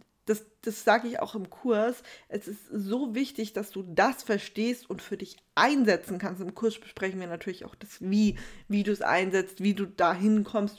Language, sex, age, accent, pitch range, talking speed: German, female, 20-39, German, 200-230 Hz, 200 wpm